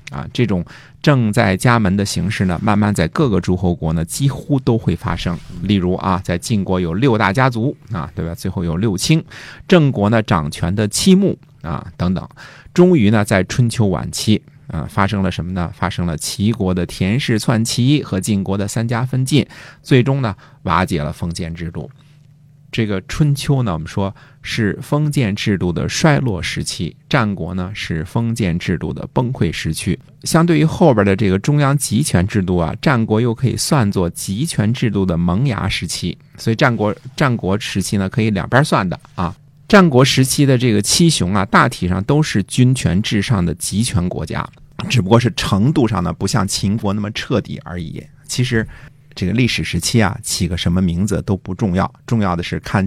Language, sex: Chinese, male